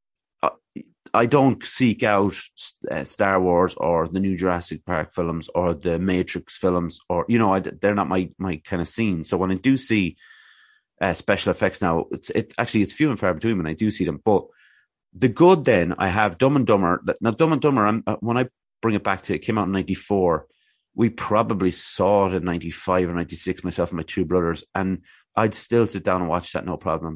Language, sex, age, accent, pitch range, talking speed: English, male, 30-49, Irish, 90-105 Hz, 215 wpm